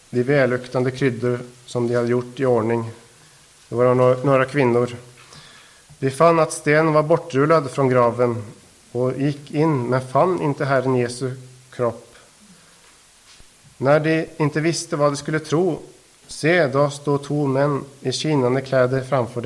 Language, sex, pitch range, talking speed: Swedish, male, 125-160 Hz, 145 wpm